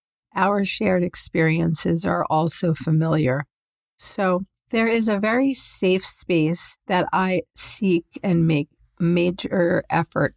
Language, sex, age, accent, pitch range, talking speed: English, female, 50-69, American, 165-195 Hz, 115 wpm